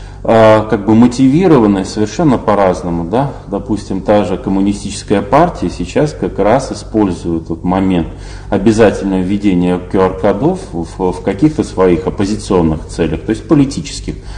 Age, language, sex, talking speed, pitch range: 30-49, Russian, male, 115 wpm, 95-125 Hz